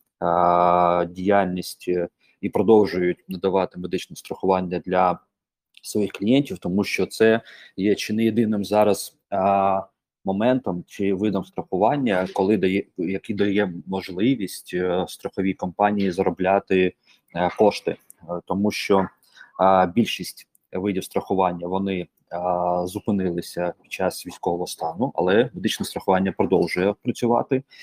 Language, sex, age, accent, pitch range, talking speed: Ukrainian, male, 20-39, native, 90-100 Hz, 95 wpm